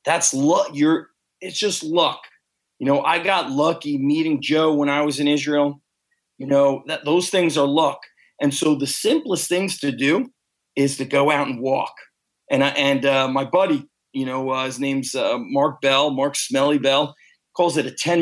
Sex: male